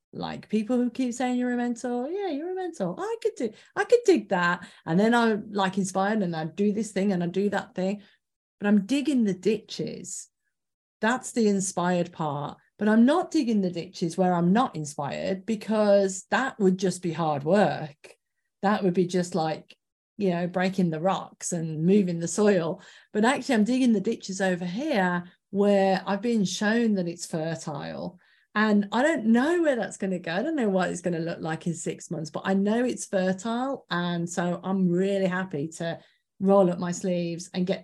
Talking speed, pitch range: 205 wpm, 180-225 Hz